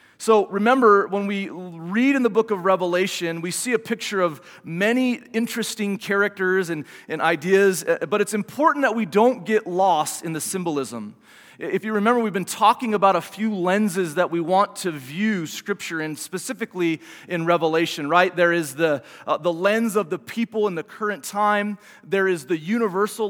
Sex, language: male, English